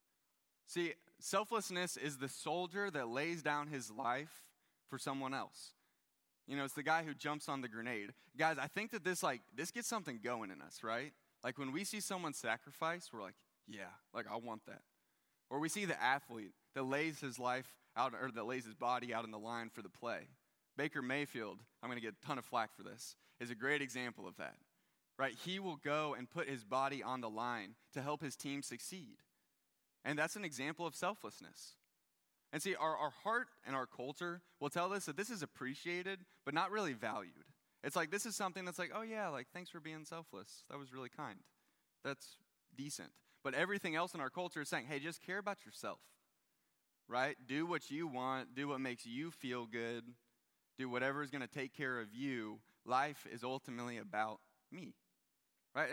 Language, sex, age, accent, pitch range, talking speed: English, male, 20-39, American, 125-175 Hz, 205 wpm